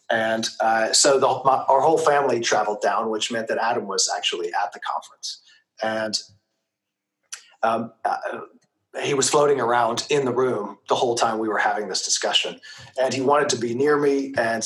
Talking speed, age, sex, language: 185 wpm, 30-49, male, English